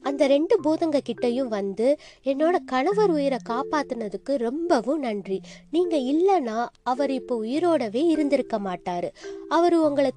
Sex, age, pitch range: female, 20-39, 230-340 Hz